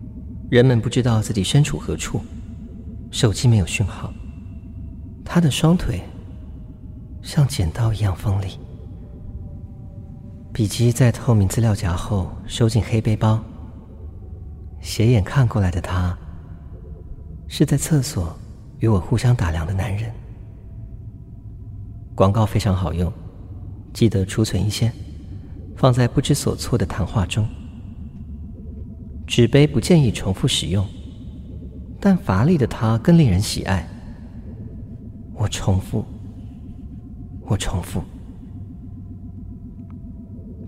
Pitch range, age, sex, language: 90-115 Hz, 40-59, male, Chinese